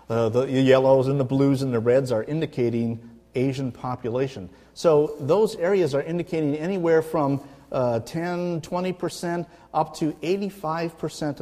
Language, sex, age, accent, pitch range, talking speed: English, male, 50-69, American, 115-150 Hz, 135 wpm